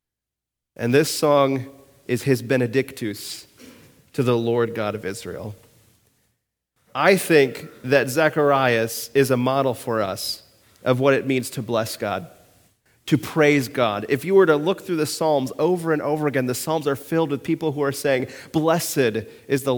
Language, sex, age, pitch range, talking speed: English, male, 40-59, 115-145 Hz, 165 wpm